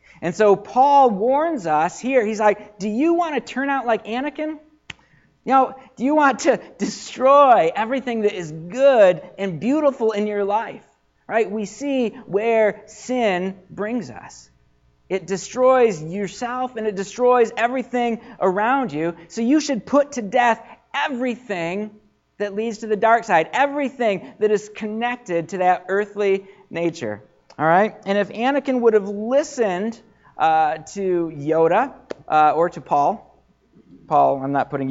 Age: 40-59